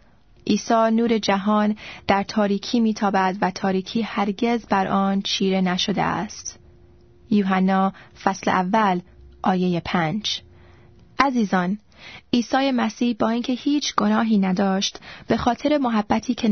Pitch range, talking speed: 195-225 Hz, 115 wpm